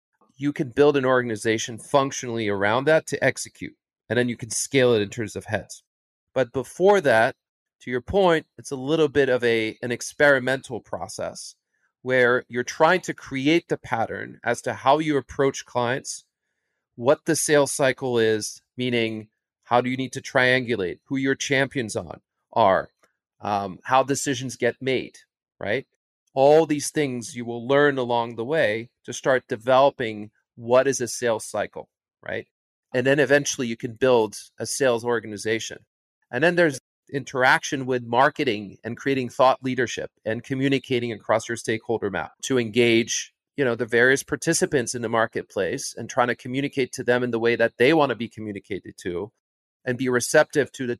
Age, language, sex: 40-59, English, male